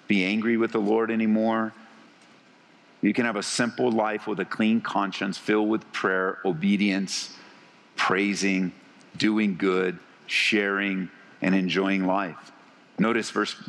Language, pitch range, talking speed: English, 100-130 Hz, 125 wpm